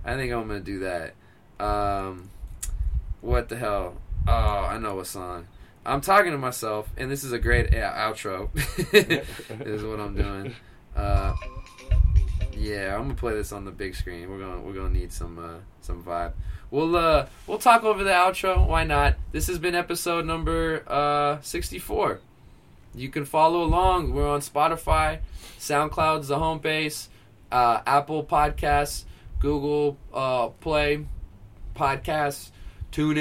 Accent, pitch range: American, 90-150 Hz